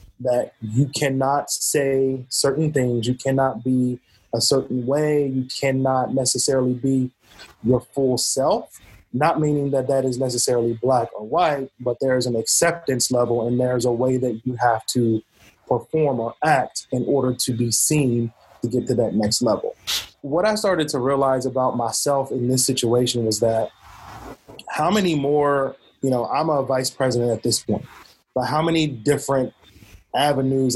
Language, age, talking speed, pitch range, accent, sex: English, 20-39, 170 wpm, 125-140 Hz, American, male